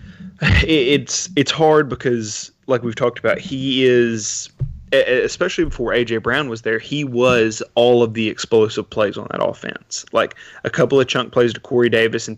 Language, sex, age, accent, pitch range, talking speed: English, male, 20-39, American, 115-135 Hz, 175 wpm